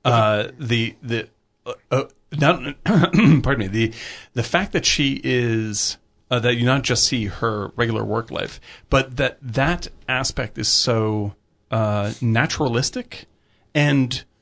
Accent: American